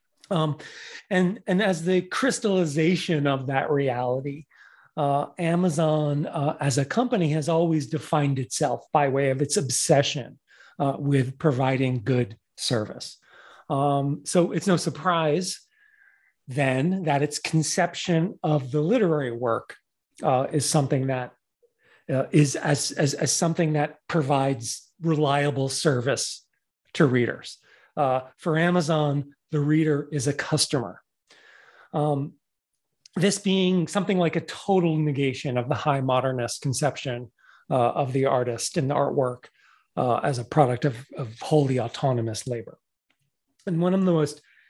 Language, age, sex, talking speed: English, 40-59, male, 135 wpm